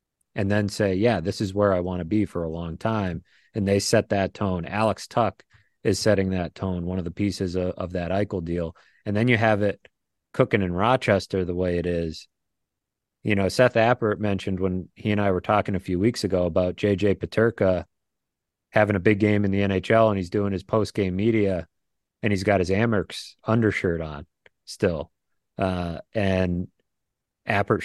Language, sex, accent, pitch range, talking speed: English, male, American, 95-115 Hz, 190 wpm